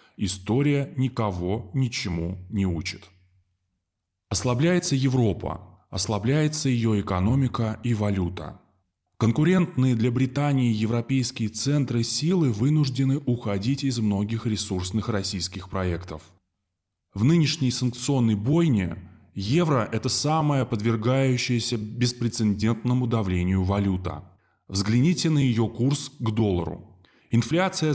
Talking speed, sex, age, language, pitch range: 90 wpm, male, 20-39, Russian, 95-130 Hz